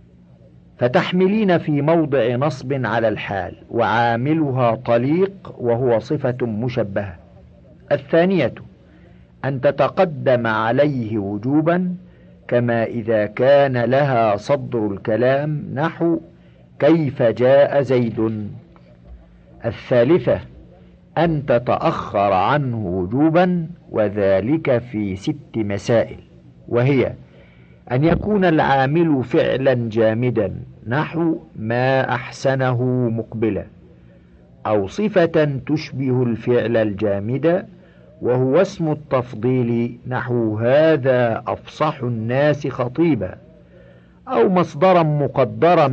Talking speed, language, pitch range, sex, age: 80 wpm, Arabic, 110-150 Hz, male, 50-69